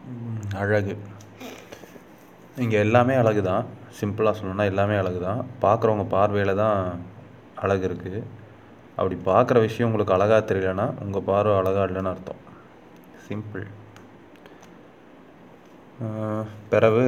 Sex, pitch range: male, 95-110 Hz